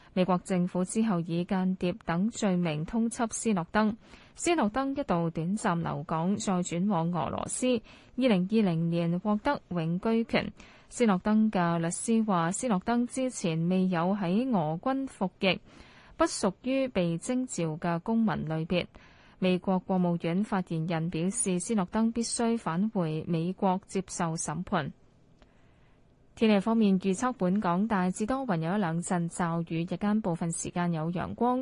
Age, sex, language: 20-39, female, Chinese